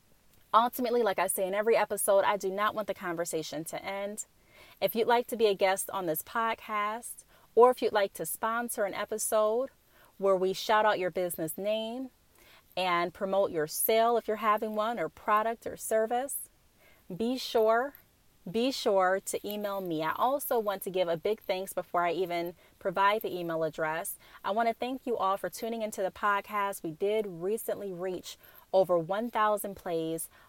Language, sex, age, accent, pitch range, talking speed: English, female, 30-49, American, 180-220 Hz, 180 wpm